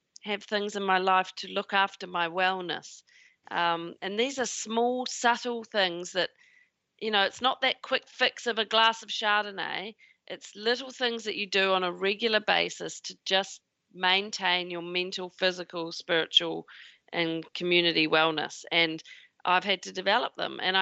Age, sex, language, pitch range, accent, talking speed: 40-59, female, English, 180-235 Hz, Australian, 165 wpm